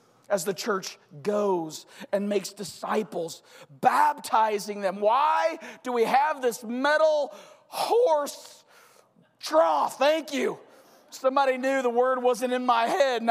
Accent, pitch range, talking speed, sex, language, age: American, 240-310 Hz, 125 wpm, male, English, 40-59